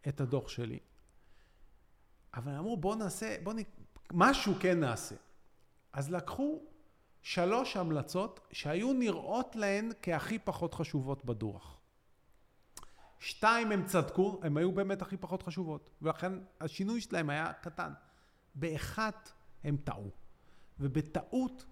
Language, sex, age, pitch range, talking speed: Hebrew, male, 40-59, 140-210 Hz, 115 wpm